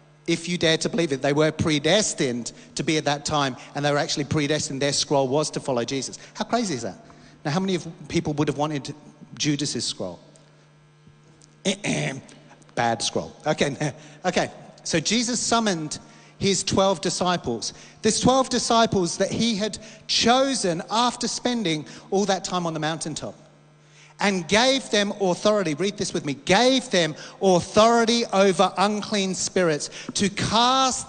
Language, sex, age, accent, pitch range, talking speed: English, male, 40-59, British, 150-220 Hz, 150 wpm